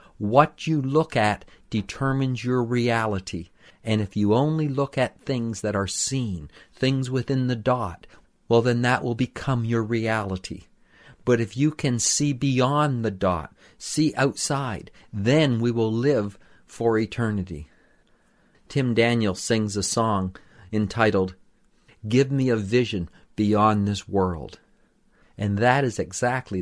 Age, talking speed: 50-69, 140 wpm